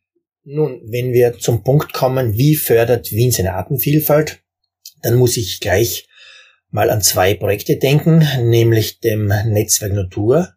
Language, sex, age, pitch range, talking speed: German, male, 30-49, 100-125 Hz, 135 wpm